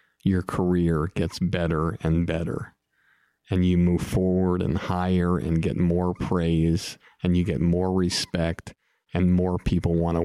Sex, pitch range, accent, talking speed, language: male, 85-90 Hz, American, 150 wpm, English